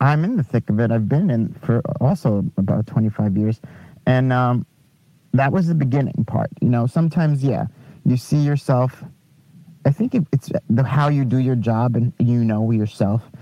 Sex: male